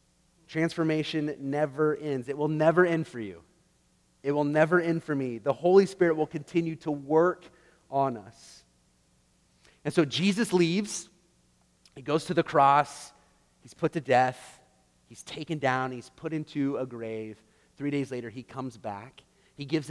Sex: male